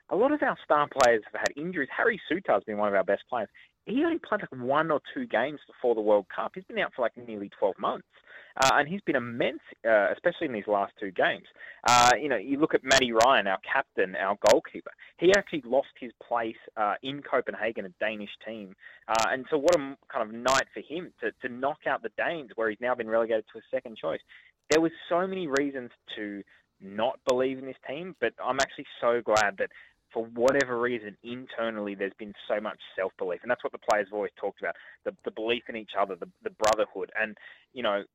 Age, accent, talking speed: 20-39, Australian, 230 wpm